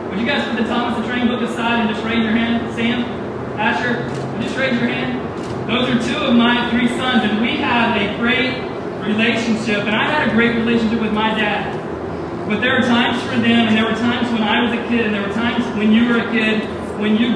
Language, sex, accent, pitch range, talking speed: English, male, American, 210-235 Hz, 245 wpm